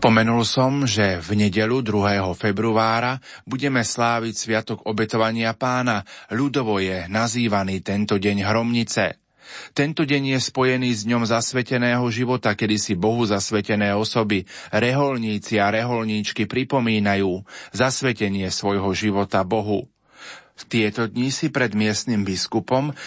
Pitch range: 105-120 Hz